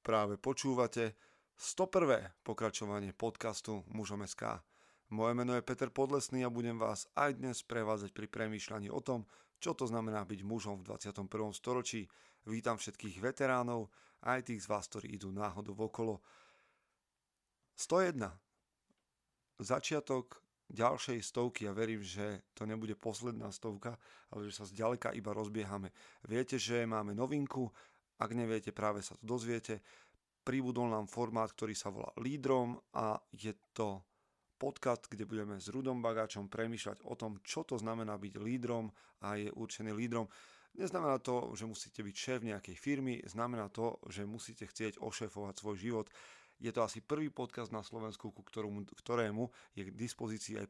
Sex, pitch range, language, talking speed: male, 105-120 Hz, Slovak, 145 wpm